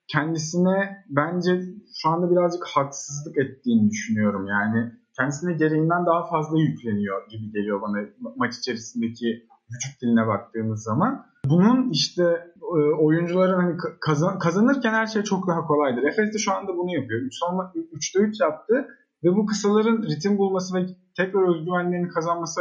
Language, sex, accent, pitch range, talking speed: Turkish, male, native, 150-210 Hz, 145 wpm